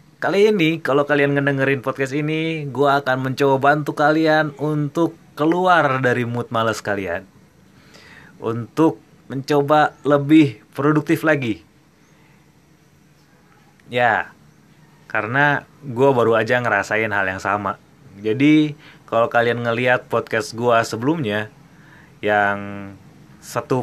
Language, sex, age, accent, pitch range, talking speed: Indonesian, male, 20-39, native, 115-155 Hz, 105 wpm